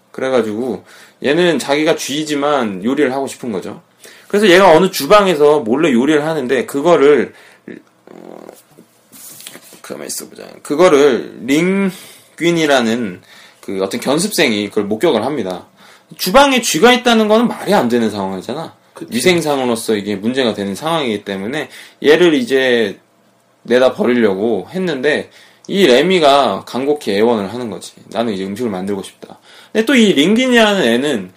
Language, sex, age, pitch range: Korean, male, 20-39, 115-190 Hz